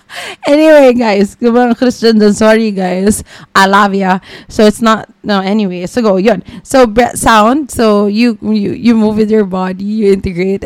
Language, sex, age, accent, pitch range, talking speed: English, female, 20-39, Filipino, 170-235 Hz, 175 wpm